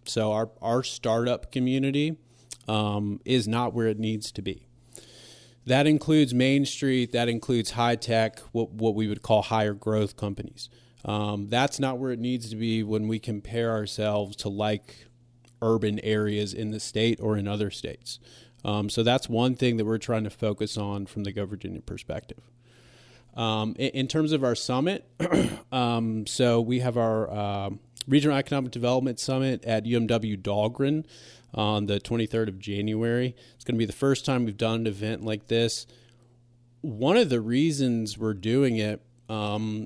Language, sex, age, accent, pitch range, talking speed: English, male, 30-49, American, 110-125 Hz, 170 wpm